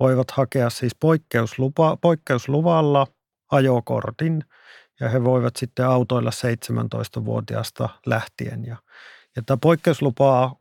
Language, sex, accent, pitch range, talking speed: Finnish, male, native, 120-140 Hz, 90 wpm